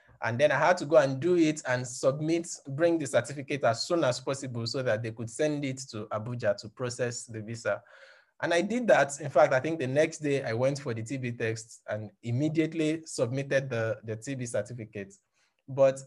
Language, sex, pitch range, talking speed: English, male, 115-155 Hz, 205 wpm